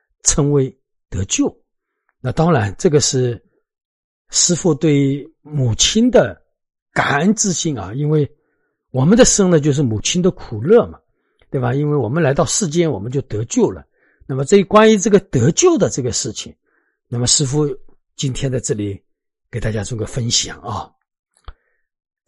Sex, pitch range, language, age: male, 120-175 Hz, Chinese, 50-69